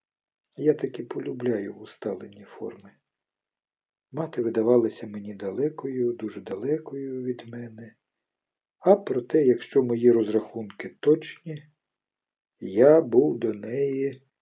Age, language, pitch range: 50-69, Ukrainian, 110-145 Hz